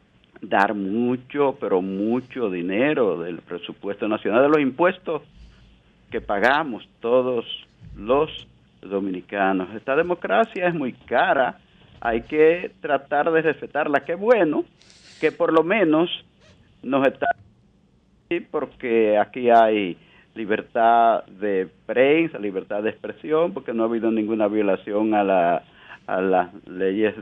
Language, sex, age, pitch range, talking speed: Spanish, male, 50-69, 105-170 Hz, 120 wpm